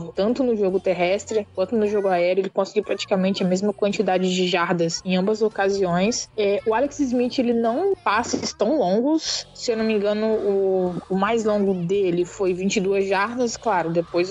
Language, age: Portuguese, 20-39